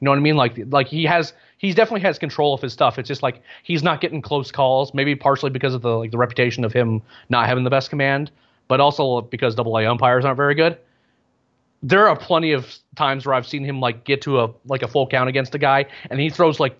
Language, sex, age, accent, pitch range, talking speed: English, male, 30-49, American, 125-145 Hz, 255 wpm